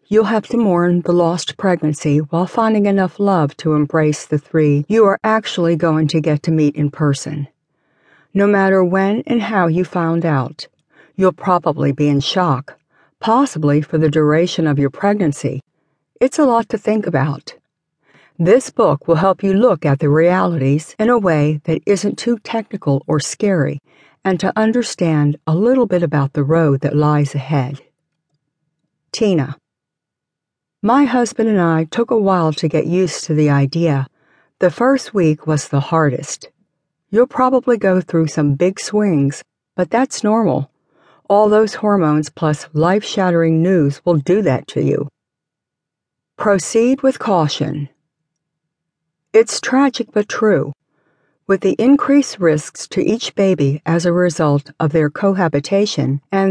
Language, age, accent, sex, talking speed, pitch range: English, 60-79, American, female, 150 wpm, 150-200 Hz